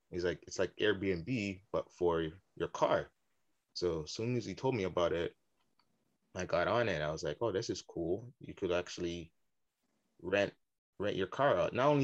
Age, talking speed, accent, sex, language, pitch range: 20-39, 195 wpm, American, male, English, 85-120 Hz